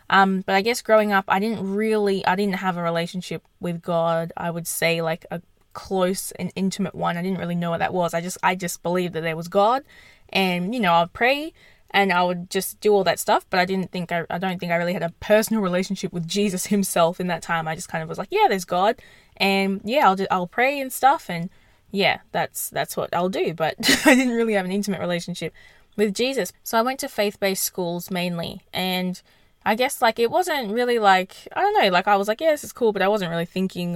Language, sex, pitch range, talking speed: English, female, 175-205 Hz, 245 wpm